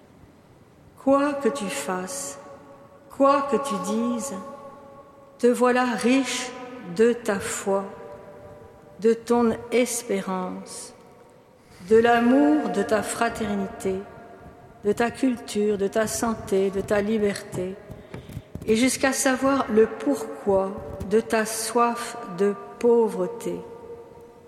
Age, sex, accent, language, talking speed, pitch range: 50-69, female, French, French, 100 wpm, 195-240 Hz